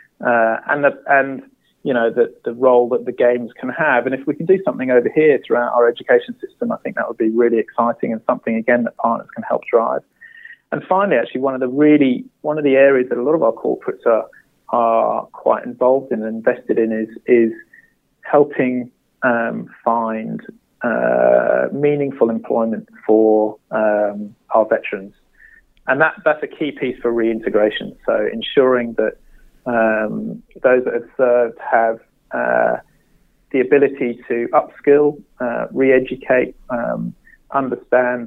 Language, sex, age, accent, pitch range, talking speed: English, male, 30-49, British, 115-140 Hz, 165 wpm